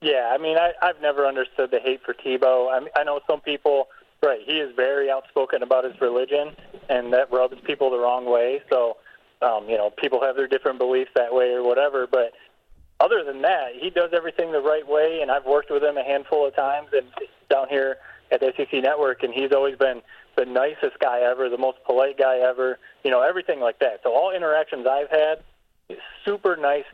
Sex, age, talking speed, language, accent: male, 30-49, 205 wpm, English, American